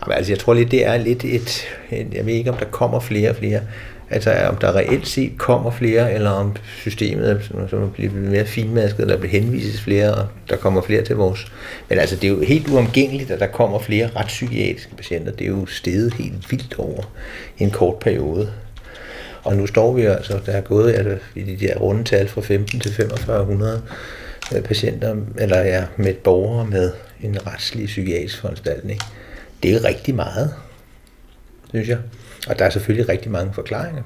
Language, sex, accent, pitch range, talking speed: Danish, male, native, 100-120 Hz, 195 wpm